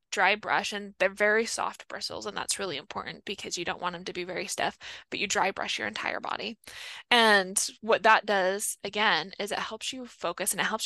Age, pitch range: 10-29, 195-230 Hz